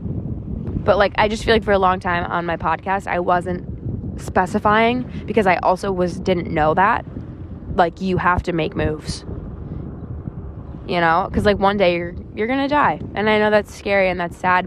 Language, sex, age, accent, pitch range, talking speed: English, female, 20-39, American, 160-190 Hz, 195 wpm